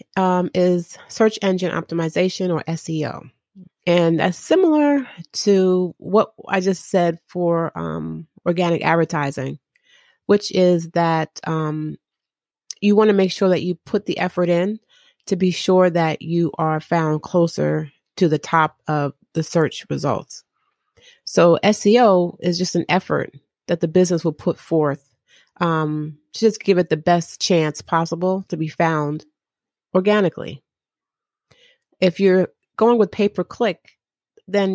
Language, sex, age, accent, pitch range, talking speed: English, female, 30-49, American, 160-190 Hz, 140 wpm